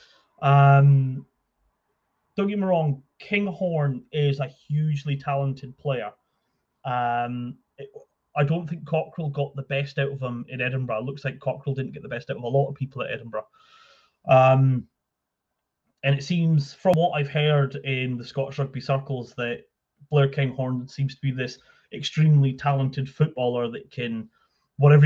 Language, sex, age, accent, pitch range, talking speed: English, male, 30-49, British, 125-145 Hz, 160 wpm